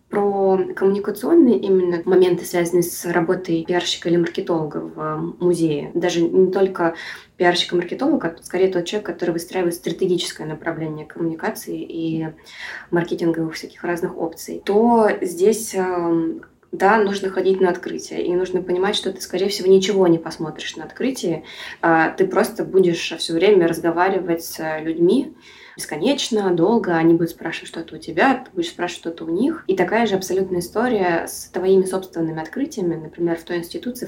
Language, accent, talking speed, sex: Russian, native, 150 wpm, female